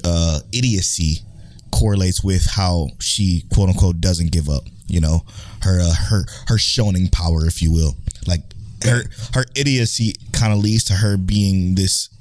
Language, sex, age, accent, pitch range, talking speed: English, male, 20-39, American, 95-120 Hz, 160 wpm